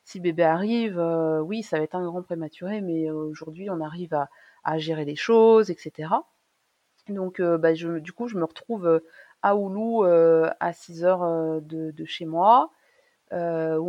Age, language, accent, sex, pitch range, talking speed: 30-49, French, French, female, 165-210 Hz, 185 wpm